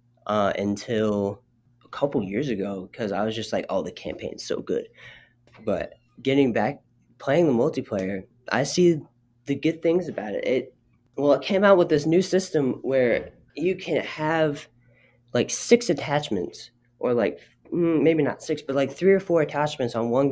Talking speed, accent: 170 wpm, American